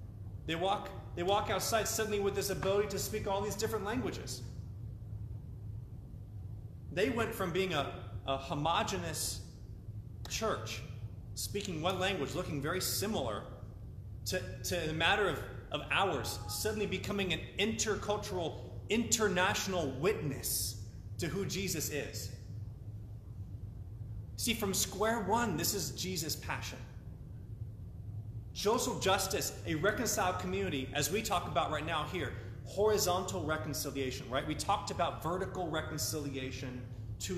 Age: 30-49